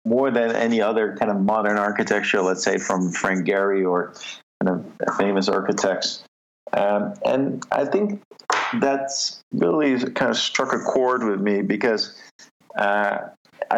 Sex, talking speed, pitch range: male, 145 wpm, 100-125 Hz